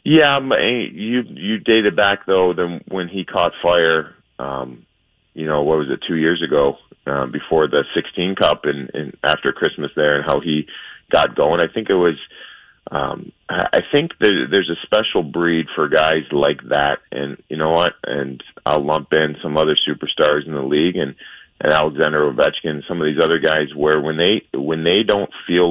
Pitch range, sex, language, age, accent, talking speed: 75-85 Hz, male, English, 30-49, American, 185 wpm